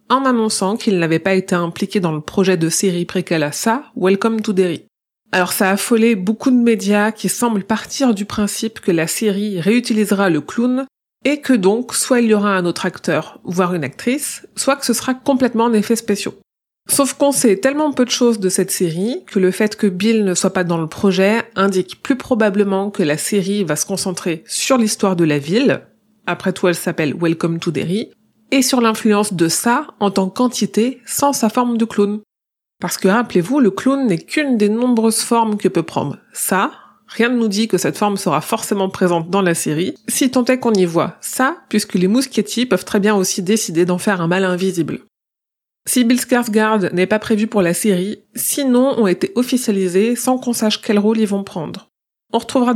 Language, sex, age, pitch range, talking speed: French, female, 30-49, 190-240 Hz, 210 wpm